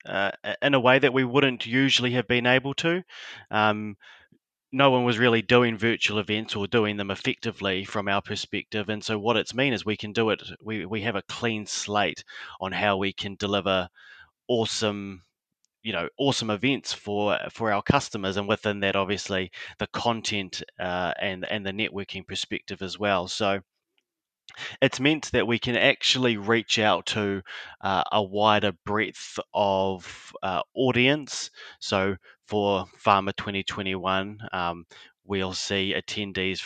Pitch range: 95-115 Hz